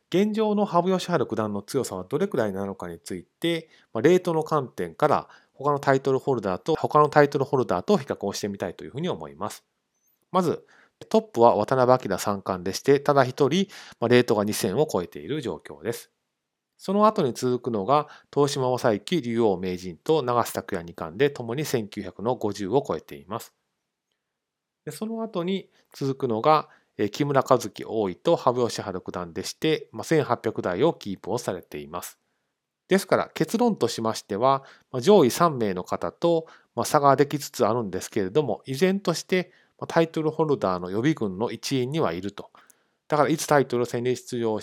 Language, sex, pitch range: Japanese, male, 105-155 Hz